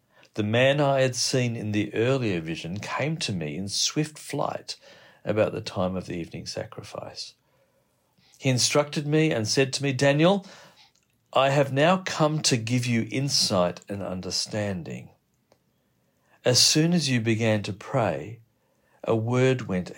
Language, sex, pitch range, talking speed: English, male, 100-135 Hz, 150 wpm